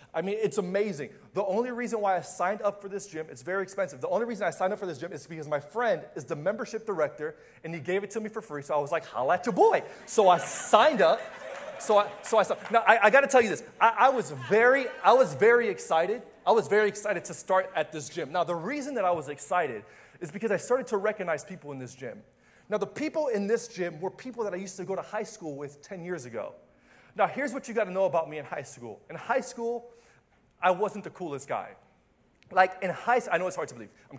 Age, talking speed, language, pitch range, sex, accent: 30-49, 265 wpm, English, 175-230 Hz, male, American